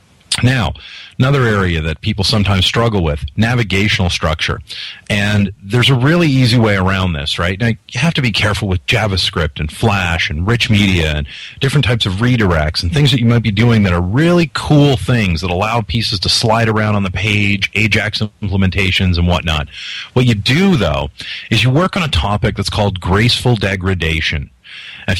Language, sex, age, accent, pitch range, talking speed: English, male, 40-59, American, 95-120 Hz, 185 wpm